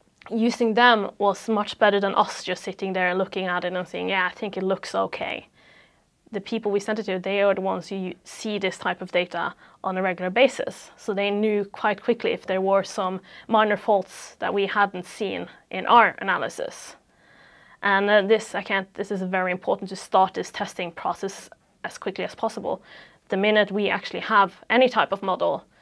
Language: English